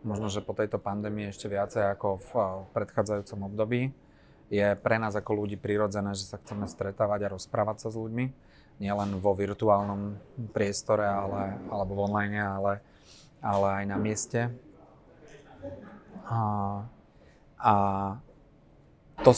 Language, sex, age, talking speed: Slovak, male, 30-49, 130 wpm